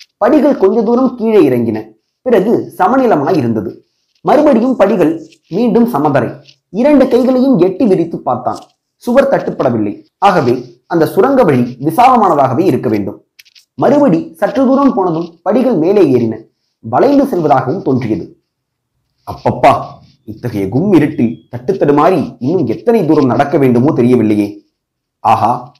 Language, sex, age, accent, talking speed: Tamil, male, 30-49, native, 110 wpm